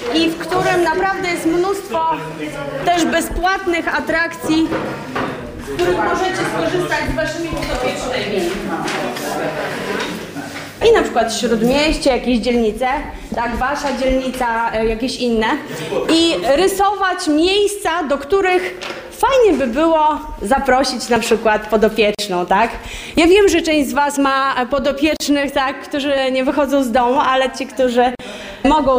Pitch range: 260-335 Hz